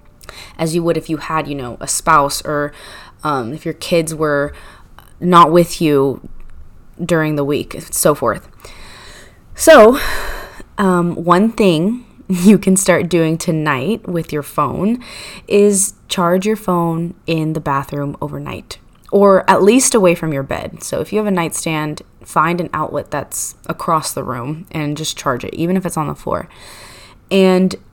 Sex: female